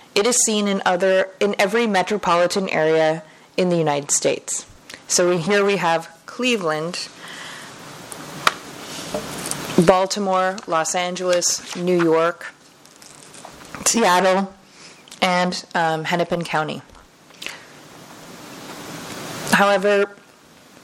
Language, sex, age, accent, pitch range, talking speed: English, female, 30-49, American, 160-200 Hz, 85 wpm